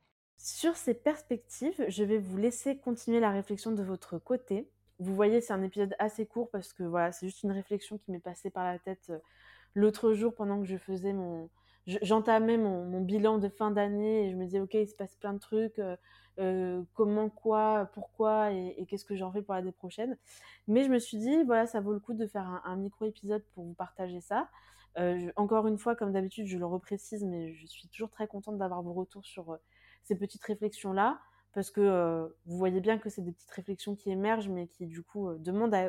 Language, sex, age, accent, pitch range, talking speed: French, female, 20-39, French, 185-220 Hz, 225 wpm